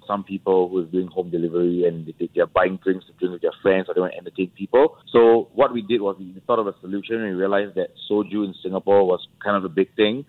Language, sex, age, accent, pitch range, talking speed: English, male, 30-49, Malaysian, 95-105 Hz, 275 wpm